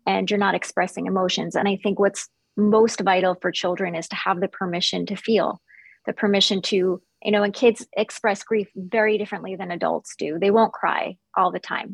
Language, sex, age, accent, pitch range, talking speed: English, female, 30-49, American, 195-225 Hz, 200 wpm